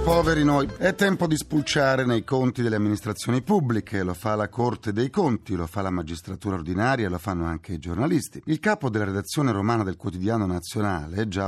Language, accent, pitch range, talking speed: Italian, native, 100-145 Hz, 190 wpm